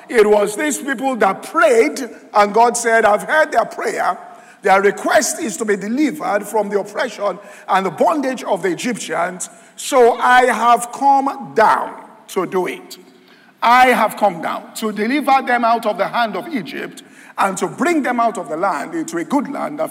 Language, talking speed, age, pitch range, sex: English, 185 wpm, 50-69, 205-260 Hz, male